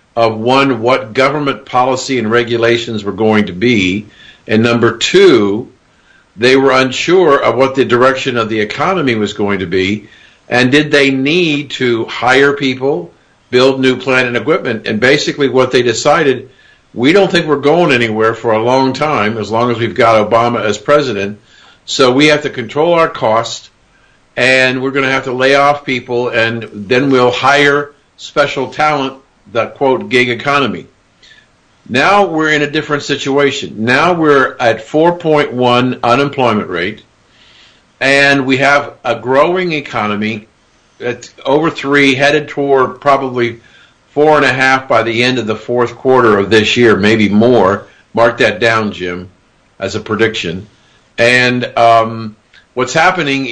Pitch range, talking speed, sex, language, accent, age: 115-140 Hz, 155 wpm, male, English, American, 50-69